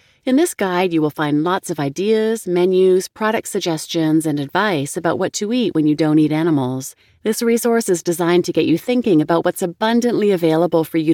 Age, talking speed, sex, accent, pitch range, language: 30-49, 200 wpm, female, American, 155-200 Hz, English